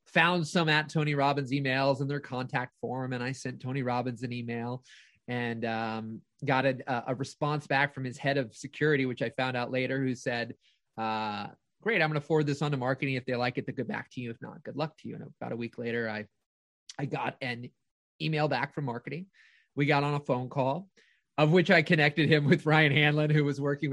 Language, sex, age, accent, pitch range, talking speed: English, male, 30-49, American, 125-150 Hz, 225 wpm